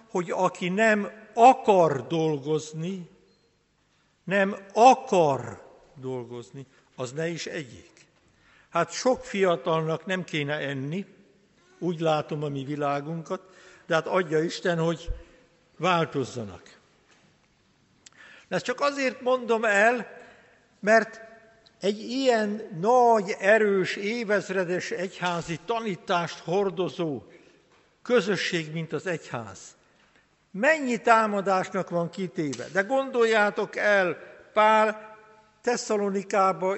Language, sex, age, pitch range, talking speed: Hungarian, male, 60-79, 170-215 Hz, 90 wpm